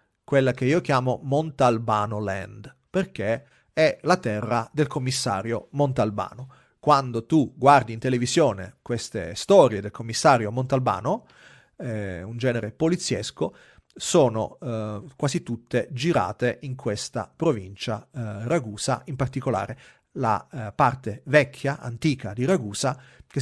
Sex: male